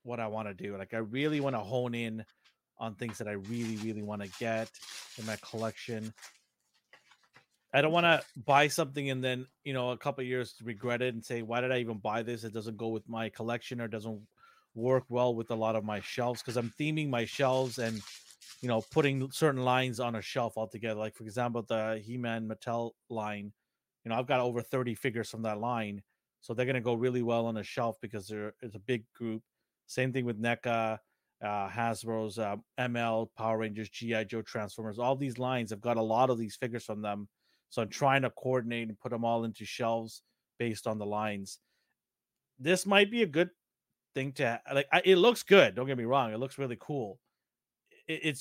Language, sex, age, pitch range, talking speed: English, male, 30-49, 110-130 Hz, 215 wpm